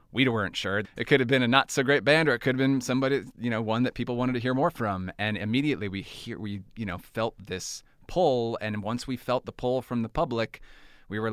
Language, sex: English, male